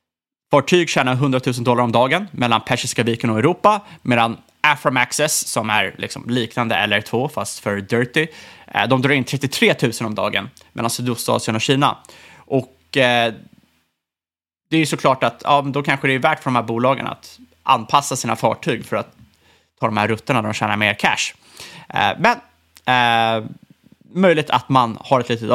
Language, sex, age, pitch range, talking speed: Swedish, male, 20-39, 110-145 Hz, 175 wpm